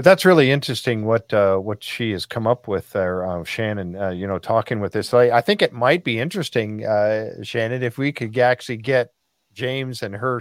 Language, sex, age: English, male, 50-69